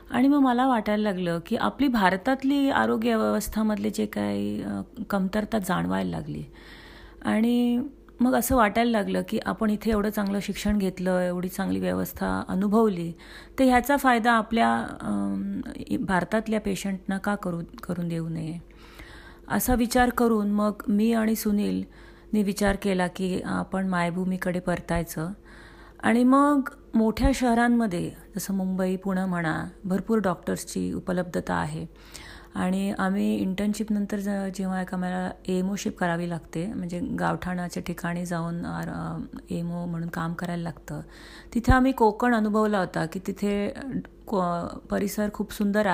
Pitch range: 170-220 Hz